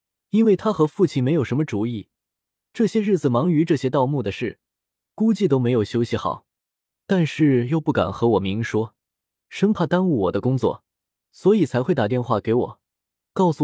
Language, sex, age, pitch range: Chinese, male, 20-39, 110-160 Hz